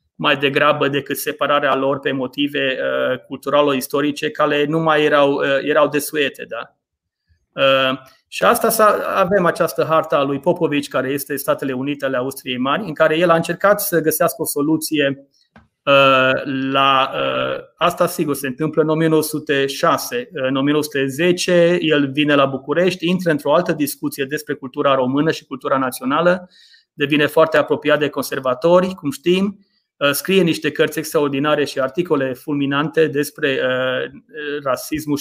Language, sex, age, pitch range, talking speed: Romanian, male, 30-49, 135-160 Hz, 135 wpm